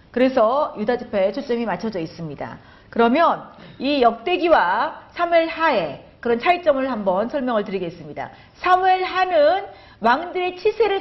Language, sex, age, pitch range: Korean, female, 40-59, 230-325 Hz